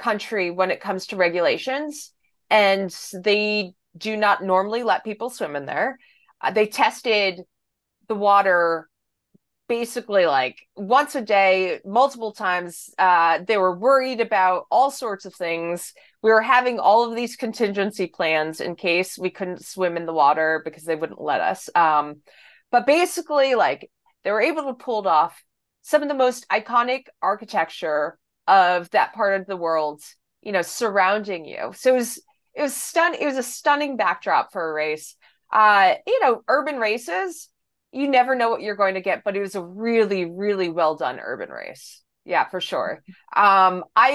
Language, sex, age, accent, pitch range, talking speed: English, female, 30-49, American, 180-245 Hz, 170 wpm